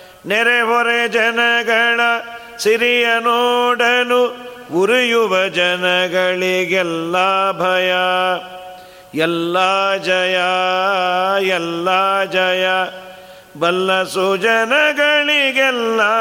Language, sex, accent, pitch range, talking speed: Kannada, male, native, 180-225 Hz, 50 wpm